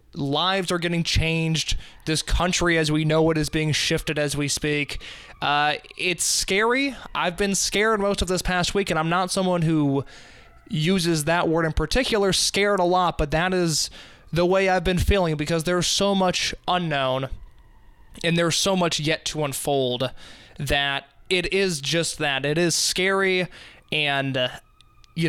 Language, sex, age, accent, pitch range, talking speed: English, male, 20-39, American, 150-185 Hz, 165 wpm